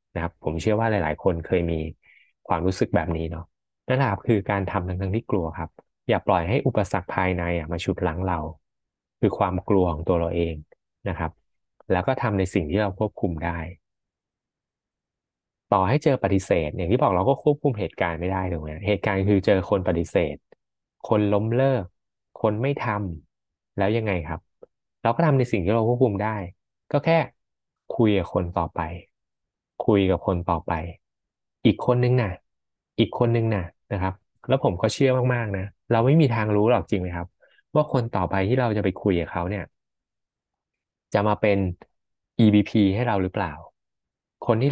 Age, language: 20-39, Thai